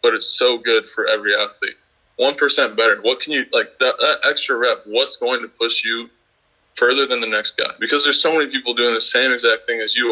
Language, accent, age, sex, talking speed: English, American, 20-39, male, 235 wpm